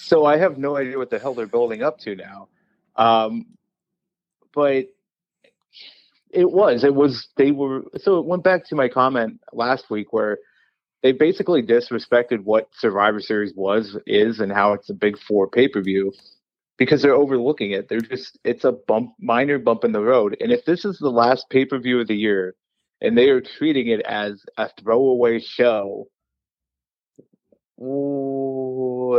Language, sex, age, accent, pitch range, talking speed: English, male, 30-49, American, 110-145 Hz, 165 wpm